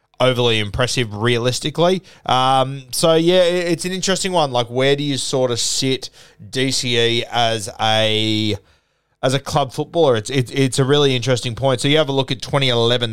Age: 20-39